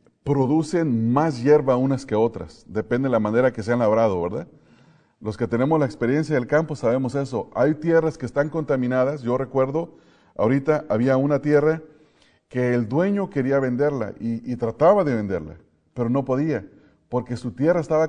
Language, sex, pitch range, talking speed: English, male, 115-150 Hz, 175 wpm